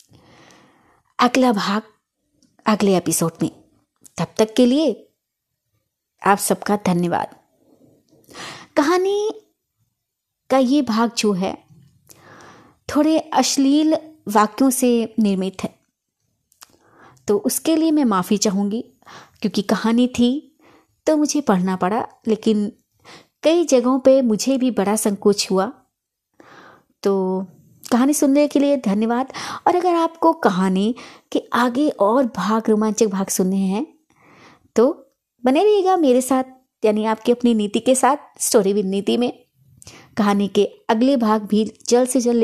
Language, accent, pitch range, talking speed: Hindi, native, 205-265 Hz, 120 wpm